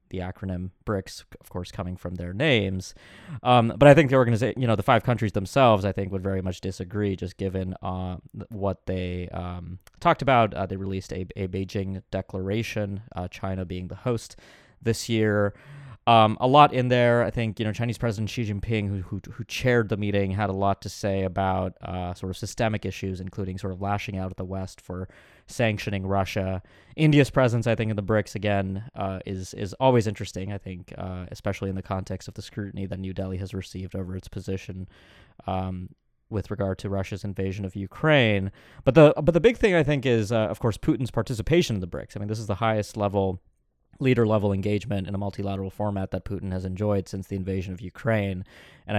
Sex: male